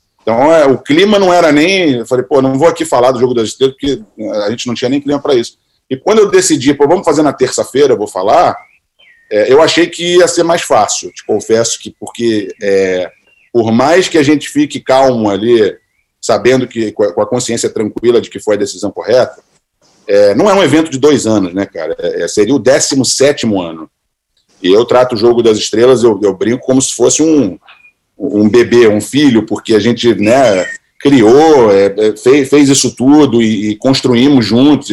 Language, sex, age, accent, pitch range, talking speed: Portuguese, male, 40-59, Brazilian, 120-200 Hz, 205 wpm